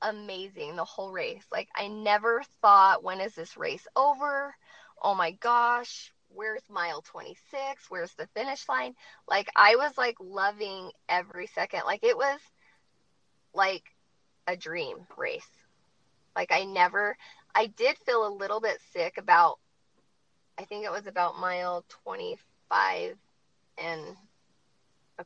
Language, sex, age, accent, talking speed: English, female, 20-39, American, 135 wpm